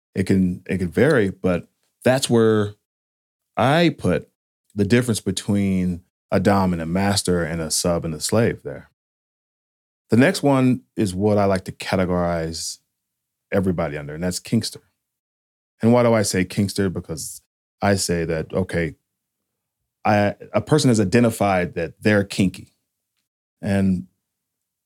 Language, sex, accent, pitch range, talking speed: English, male, American, 90-115 Hz, 140 wpm